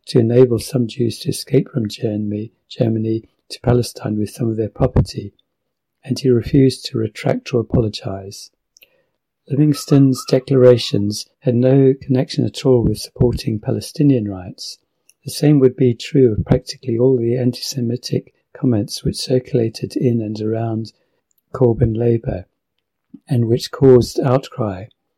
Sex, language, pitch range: male, English, 110-130 Hz